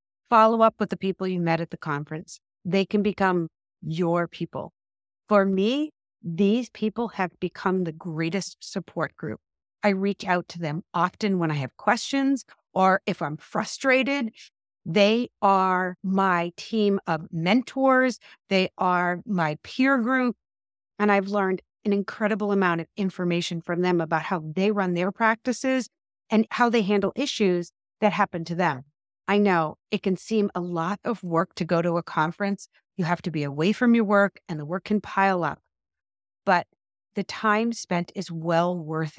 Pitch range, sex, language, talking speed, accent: 170-215 Hz, female, English, 170 wpm, American